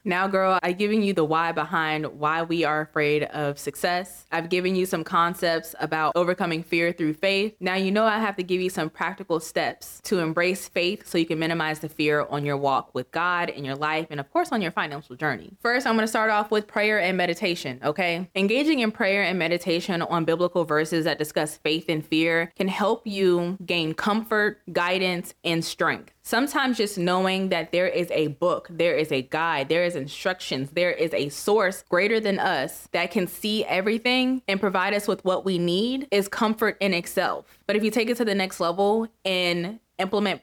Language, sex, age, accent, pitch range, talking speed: English, female, 20-39, American, 165-205 Hz, 205 wpm